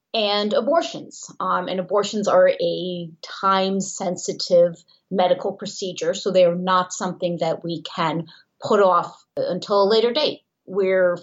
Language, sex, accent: English, female, American